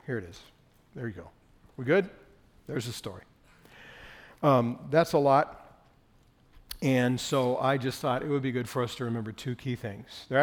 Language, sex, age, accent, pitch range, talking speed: English, male, 50-69, American, 125-160 Hz, 185 wpm